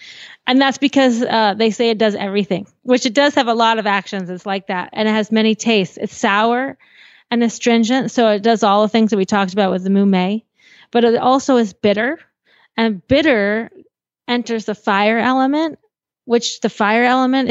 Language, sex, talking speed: English, female, 195 wpm